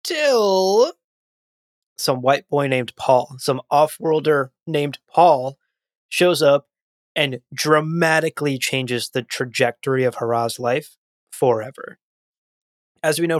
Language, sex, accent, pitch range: English, male, American, 120-145 Hz